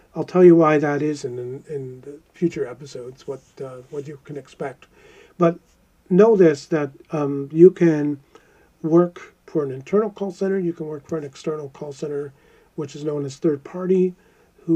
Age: 50-69